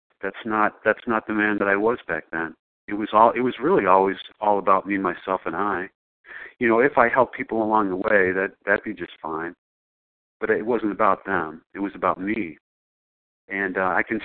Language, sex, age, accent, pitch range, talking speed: English, male, 50-69, American, 100-110 Hz, 215 wpm